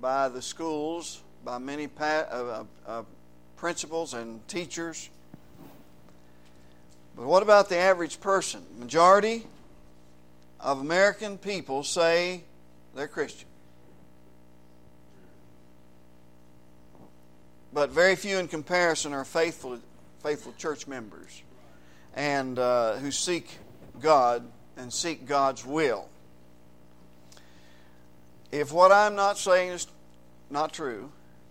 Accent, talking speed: American, 95 wpm